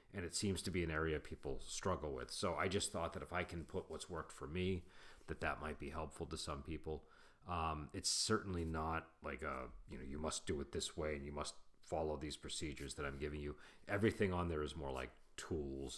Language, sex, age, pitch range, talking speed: English, male, 40-59, 75-90 Hz, 235 wpm